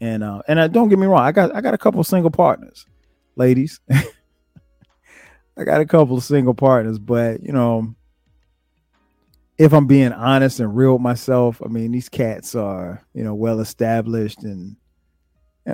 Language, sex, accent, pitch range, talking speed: English, male, American, 95-140 Hz, 175 wpm